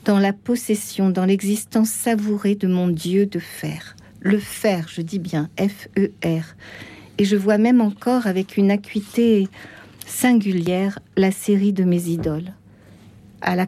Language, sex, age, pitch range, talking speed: French, female, 50-69, 175-205 Hz, 145 wpm